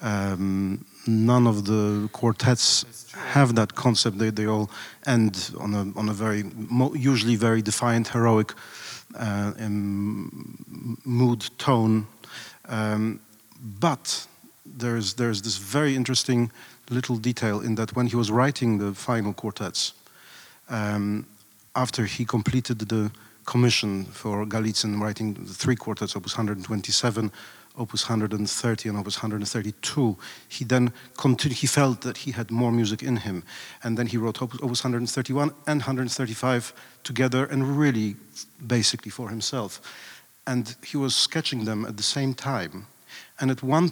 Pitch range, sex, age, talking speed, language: 105-125 Hz, male, 40-59, 135 wpm, English